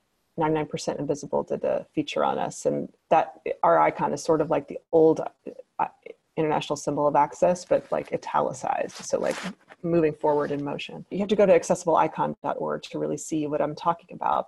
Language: English